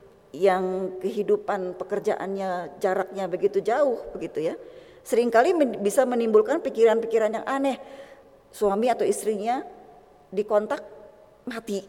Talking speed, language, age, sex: 95 wpm, Indonesian, 20-39, female